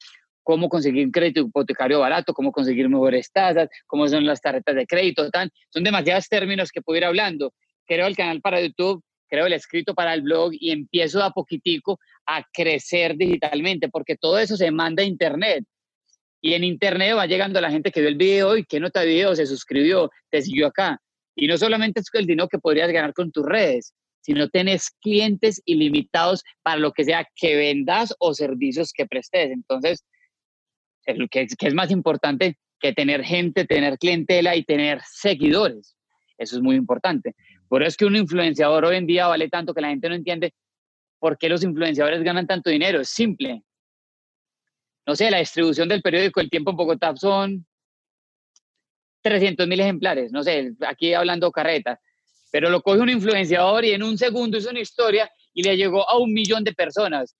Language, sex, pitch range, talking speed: Spanish, male, 160-195 Hz, 185 wpm